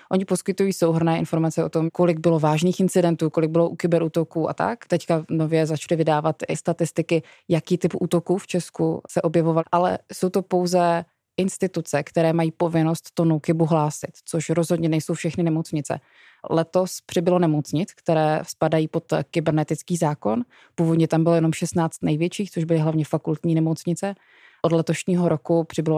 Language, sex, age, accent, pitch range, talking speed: Czech, female, 20-39, native, 155-170 Hz, 155 wpm